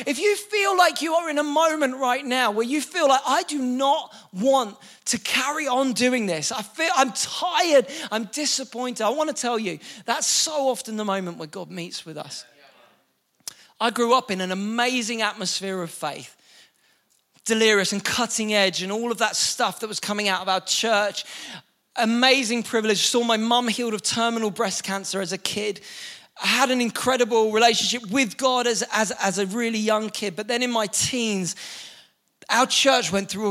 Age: 20-39